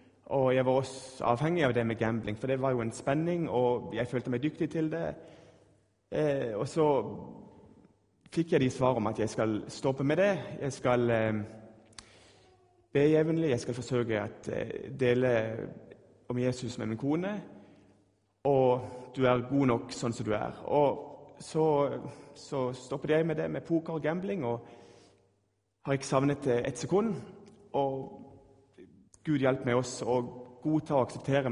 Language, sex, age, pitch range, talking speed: Danish, male, 30-49, 110-135 Hz, 165 wpm